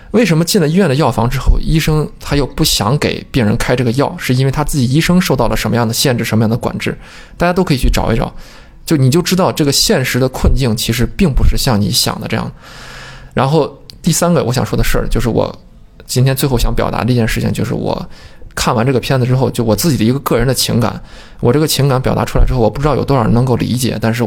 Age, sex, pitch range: 20-39, male, 115-150 Hz